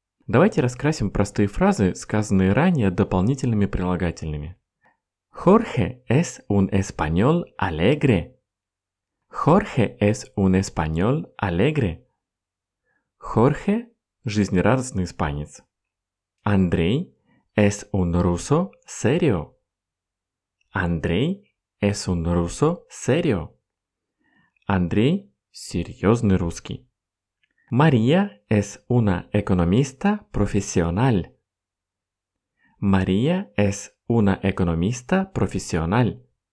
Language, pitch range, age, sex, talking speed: Russian, 90-125 Hz, 30-49, male, 65 wpm